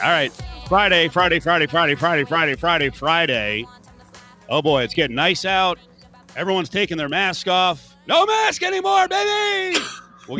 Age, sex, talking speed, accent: 40-59, male, 150 wpm, American